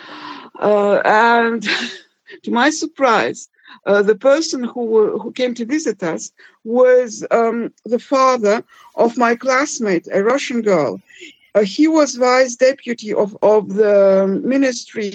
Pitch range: 205-265 Hz